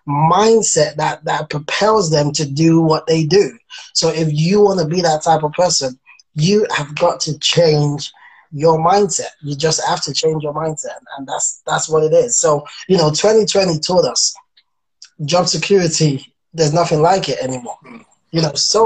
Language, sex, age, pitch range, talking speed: English, male, 20-39, 150-180 Hz, 180 wpm